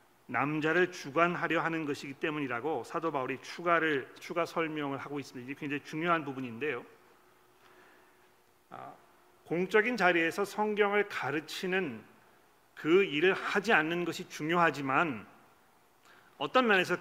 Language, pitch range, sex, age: Korean, 145-190 Hz, male, 40-59